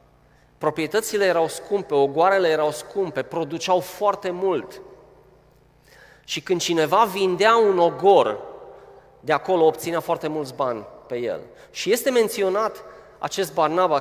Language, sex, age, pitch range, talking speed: Romanian, male, 30-49, 155-200 Hz, 120 wpm